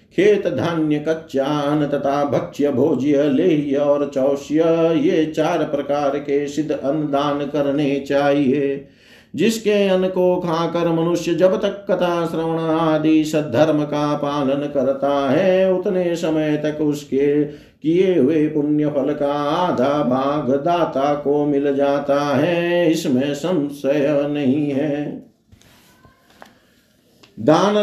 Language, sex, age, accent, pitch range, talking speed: Hindi, male, 50-69, native, 145-170 Hz, 115 wpm